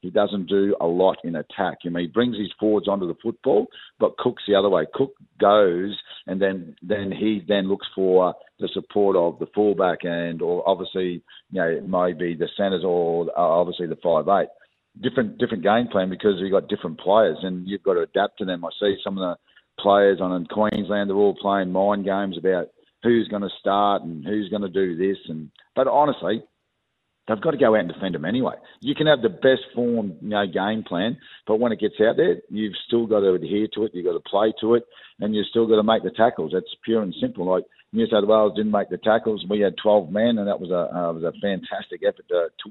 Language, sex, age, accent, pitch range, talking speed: English, male, 50-69, Australian, 95-110 Hz, 230 wpm